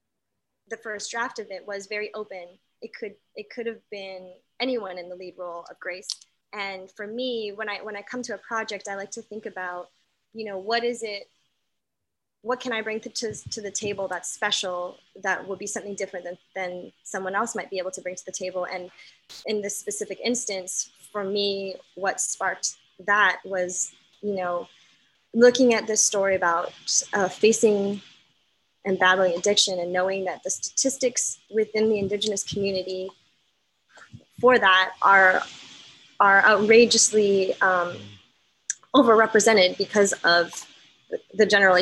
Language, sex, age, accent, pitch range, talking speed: English, female, 20-39, American, 185-215 Hz, 160 wpm